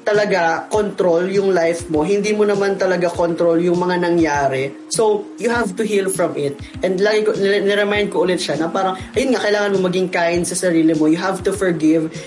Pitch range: 160-200 Hz